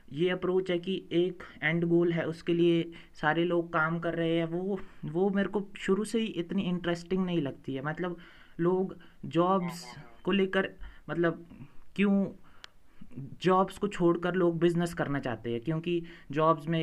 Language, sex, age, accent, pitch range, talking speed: Hindi, male, 20-39, native, 145-175 Hz, 165 wpm